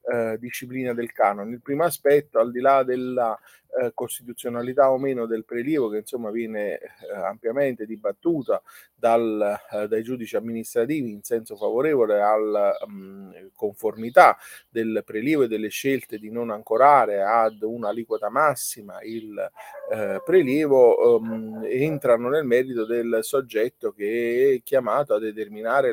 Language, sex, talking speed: Italian, male, 135 wpm